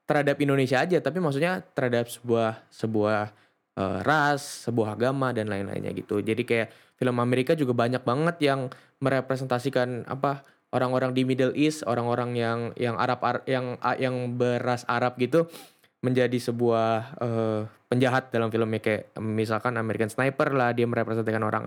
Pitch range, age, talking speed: 110-130 Hz, 10-29, 145 wpm